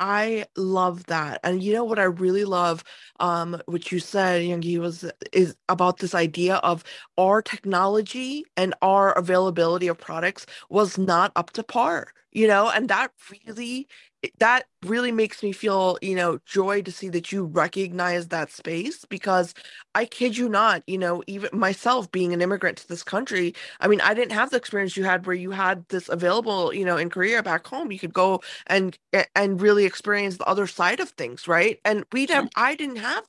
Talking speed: 190 wpm